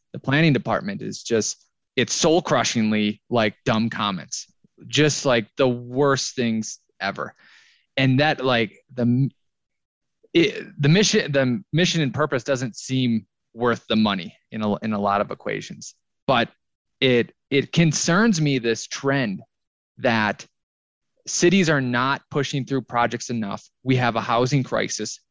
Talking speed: 140 wpm